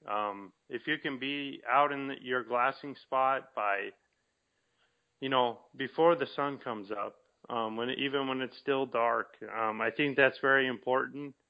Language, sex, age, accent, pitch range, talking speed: English, male, 30-49, American, 120-140 Hz, 160 wpm